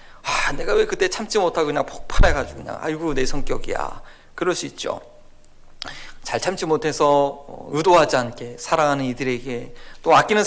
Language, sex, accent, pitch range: Korean, male, native, 130-215 Hz